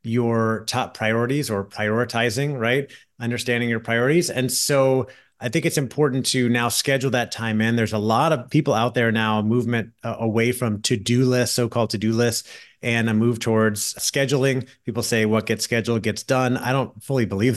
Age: 30-49